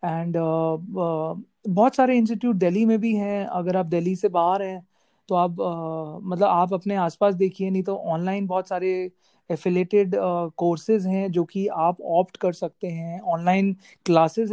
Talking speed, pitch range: 175 wpm, 175-205 Hz